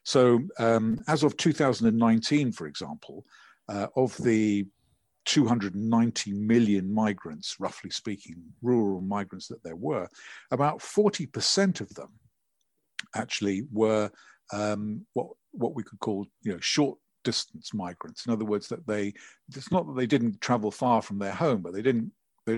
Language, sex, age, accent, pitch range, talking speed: English, male, 50-69, British, 100-125 Hz, 150 wpm